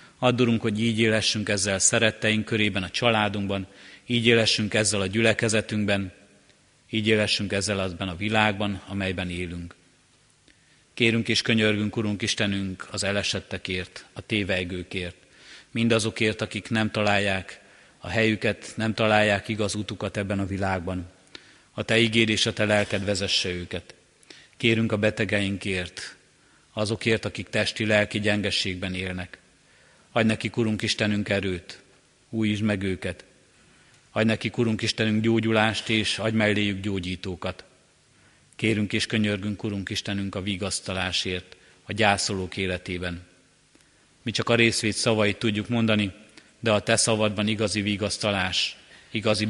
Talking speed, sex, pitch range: 120 wpm, male, 95-110 Hz